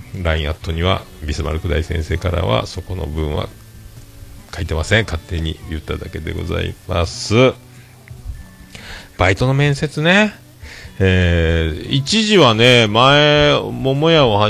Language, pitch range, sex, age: Japanese, 85-120 Hz, male, 40-59